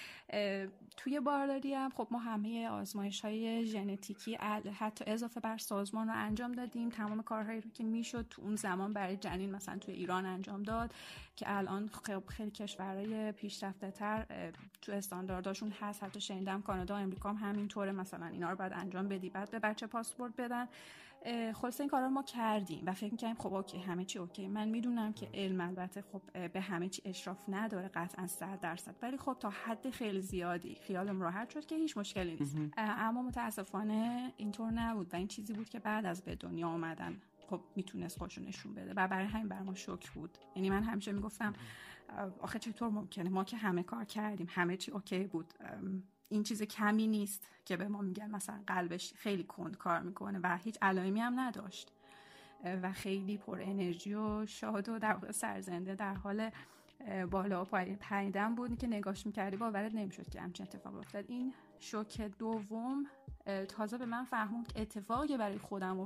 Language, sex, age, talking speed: Persian, female, 30-49, 175 wpm